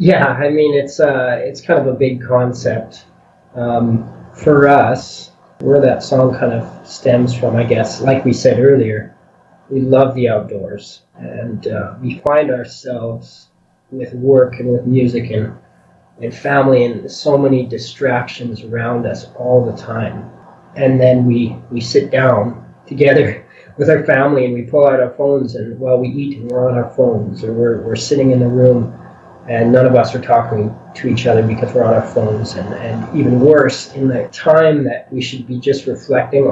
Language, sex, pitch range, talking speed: English, male, 120-140 Hz, 185 wpm